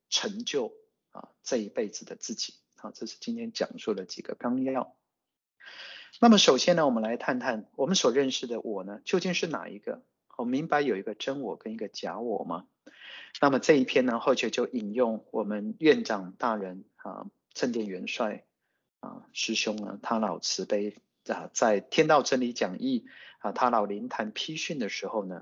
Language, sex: Chinese, male